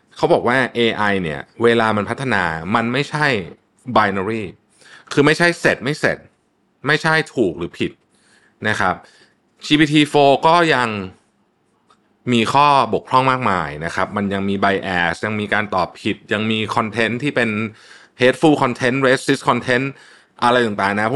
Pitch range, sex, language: 100-135 Hz, male, Thai